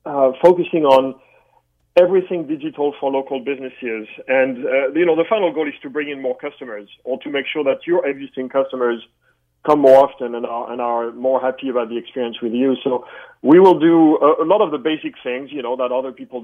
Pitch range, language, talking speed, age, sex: 125-155 Hz, English, 210 wpm, 40-59, male